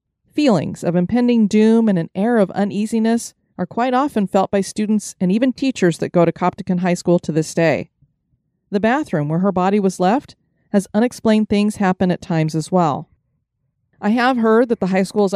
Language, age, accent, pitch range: English, 30-49, American, 175-215 Hz